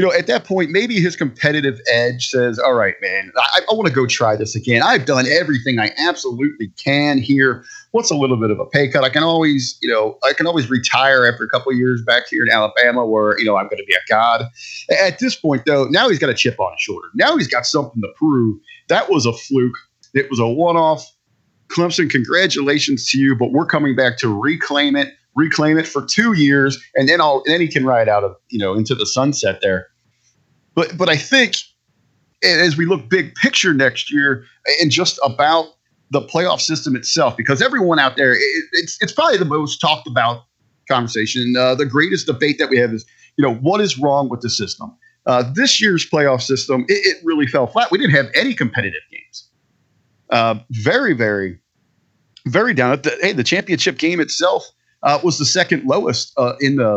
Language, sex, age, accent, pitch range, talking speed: English, male, 30-49, American, 125-165 Hz, 215 wpm